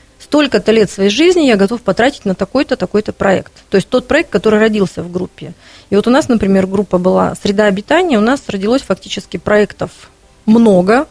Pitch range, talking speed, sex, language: 195-230 Hz, 185 wpm, female, Russian